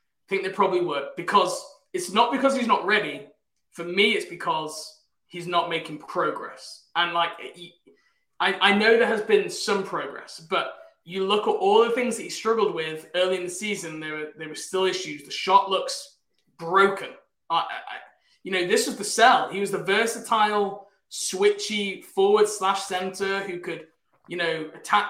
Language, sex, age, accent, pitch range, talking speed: English, male, 20-39, British, 170-205 Hz, 185 wpm